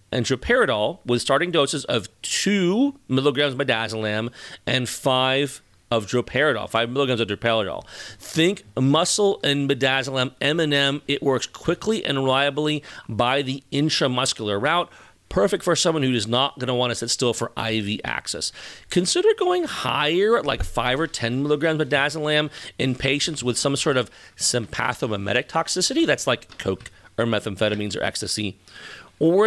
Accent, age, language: American, 40-59, English